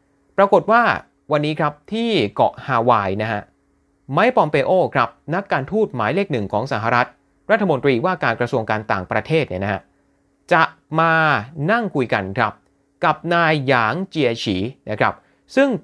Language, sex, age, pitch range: Thai, male, 30-49, 105-170 Hz